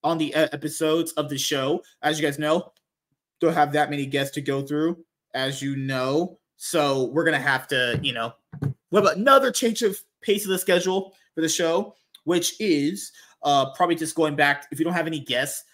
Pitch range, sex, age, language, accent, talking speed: 135-165 Hz, male, 20-39, English, American, 210 wpm